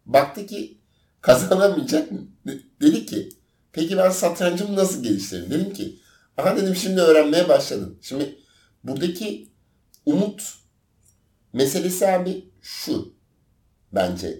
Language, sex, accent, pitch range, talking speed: Turkish, male, native, 110-165 Hz, 110 wpm